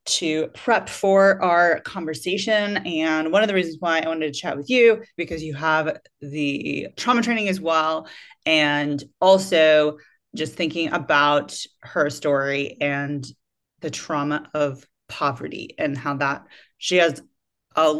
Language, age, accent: English, 30-49, American